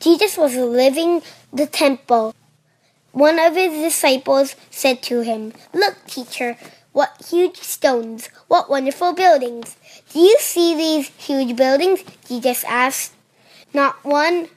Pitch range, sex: 245-290 Hz, female